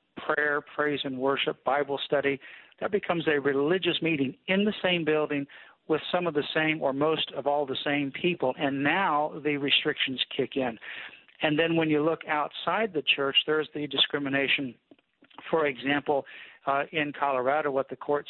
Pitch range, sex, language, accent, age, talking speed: 140-160 Hz, male, English, American, 50-69, 170 wpm